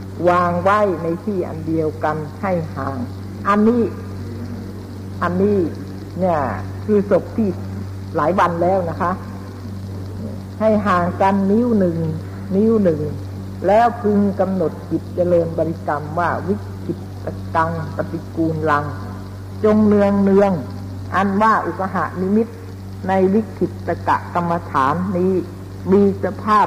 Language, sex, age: Thai, female, 60-79